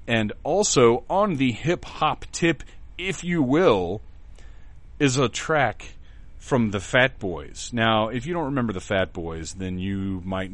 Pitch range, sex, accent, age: 90-120 Hz, male, American, 40-59